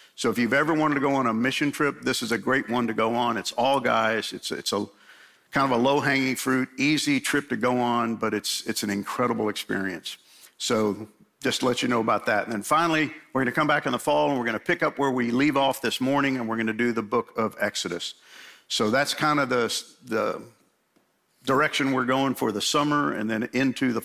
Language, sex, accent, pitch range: English, male, American, 115-145 Hz